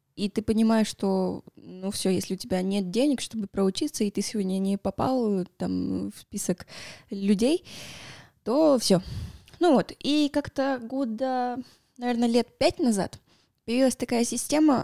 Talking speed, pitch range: 140 wpm, 195-245 Hz